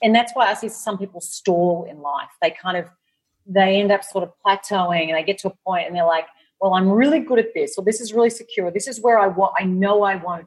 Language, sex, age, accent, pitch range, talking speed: English, female, 40-59, Australian, 180-235 Hz, 275 wpm